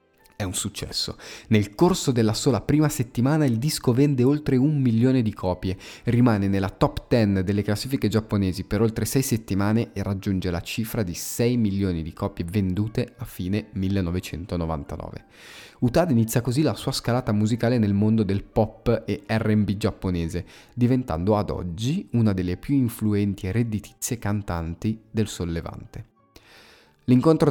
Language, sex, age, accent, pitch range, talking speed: Italian, male, 30-49, native, 95-120 Hz, 150 wpm